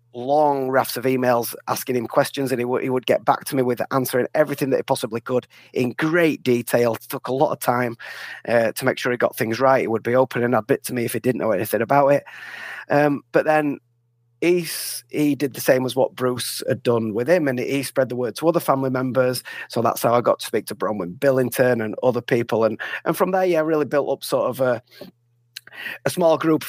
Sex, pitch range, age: male, 120-135 Hz, 30-49